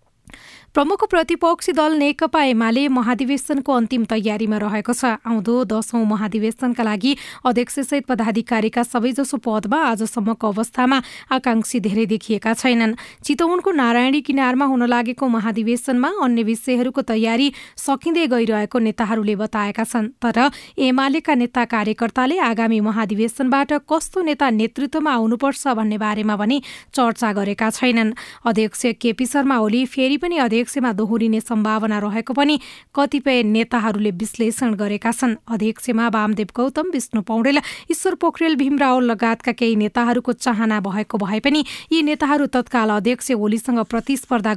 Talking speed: 125 wpm